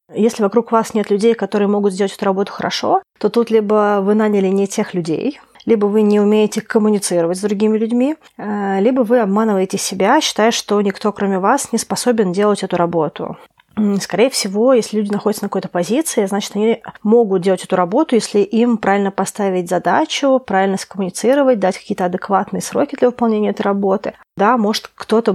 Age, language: 30-49, Russian